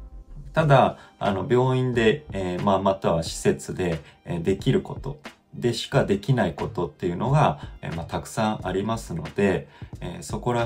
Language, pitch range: Japanese, 90-145 Hz